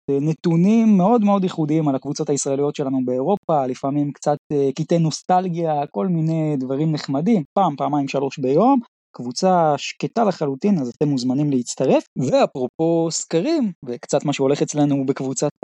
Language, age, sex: Hebrew, 20-39, male